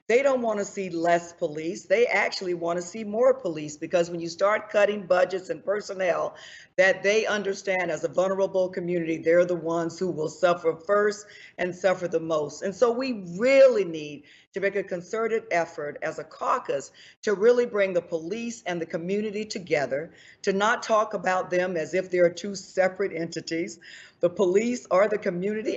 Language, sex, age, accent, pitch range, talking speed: English, female, 40-59, American, 170-220 Hz, 180 wpm